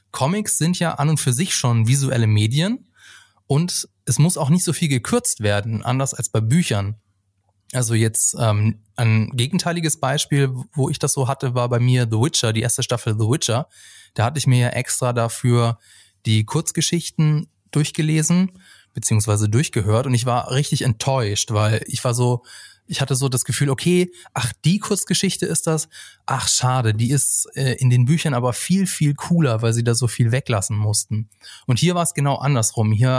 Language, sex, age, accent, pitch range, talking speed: German, male, 20-39, German, 115-150 Hz, 185 wpm